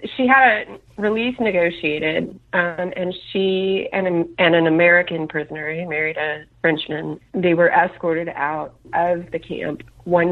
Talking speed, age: 145 wpm, 30-49